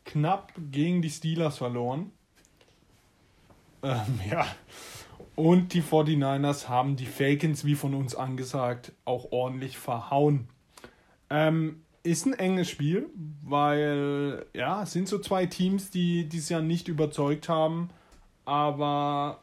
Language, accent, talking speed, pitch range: German, German, 120 wpm, 145-175 Hz